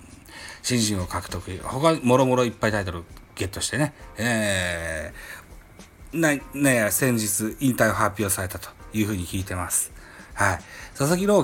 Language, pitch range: Japanese, 90-120 Hz